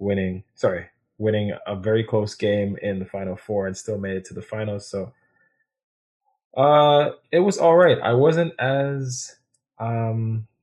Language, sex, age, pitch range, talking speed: English, male, 20-39, 100-120 Hz, 160 wpm